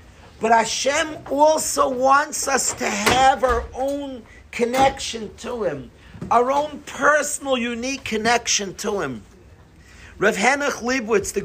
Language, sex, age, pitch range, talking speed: English, male, 50-69, 190-245 Hz, 115 wpm